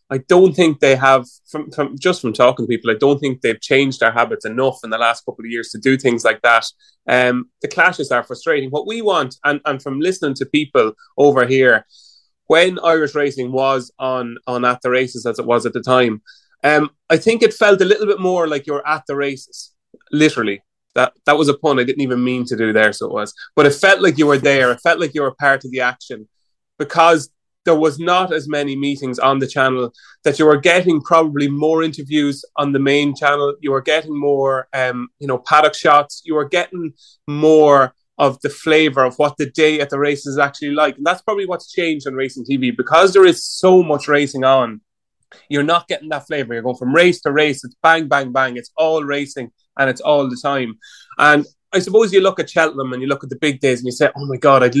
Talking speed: 235 wpm